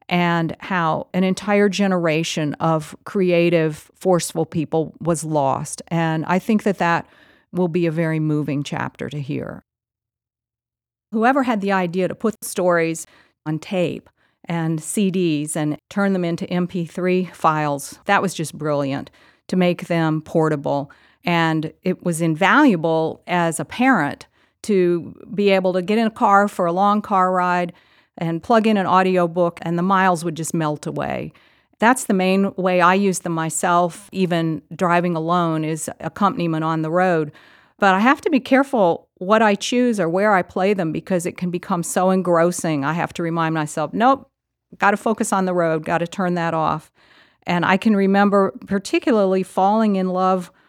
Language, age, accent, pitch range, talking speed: English, 50-69, American, 165-195 Hz, 170 wpm